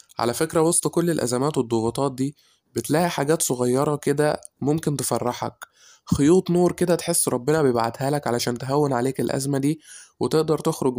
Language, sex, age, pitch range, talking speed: Arabic, male, 20-39, 125-145 Hz, 145 wpm